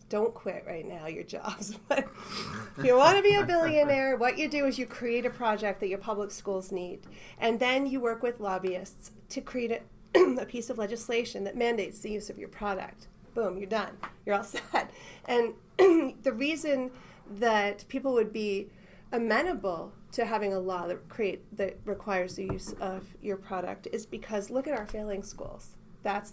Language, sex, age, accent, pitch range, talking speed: English, female, 30-49, American, 200-240 Hz, 185 wpm